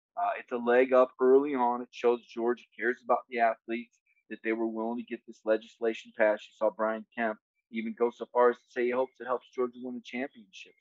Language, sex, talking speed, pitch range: English, male, 235 wpm, 115-145 Hz